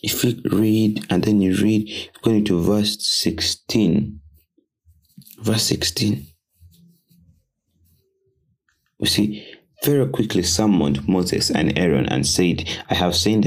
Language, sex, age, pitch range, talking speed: English, male, 30-49, 85-105 Hz, 115 wpm